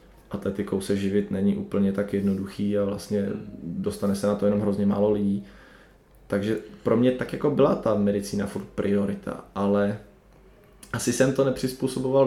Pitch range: 100-110 Hz